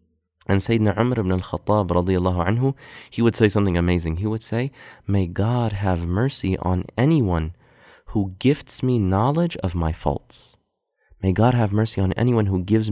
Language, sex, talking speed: English, male, 165 wpm